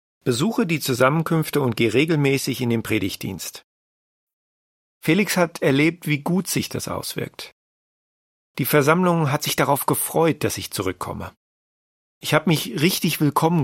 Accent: German